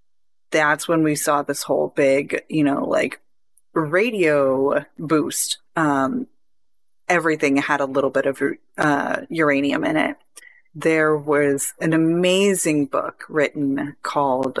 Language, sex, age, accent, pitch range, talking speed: English, female, 30-49, American, 145-175 Hz, 125 wpm